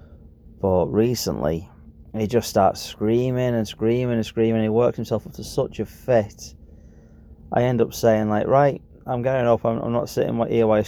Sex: male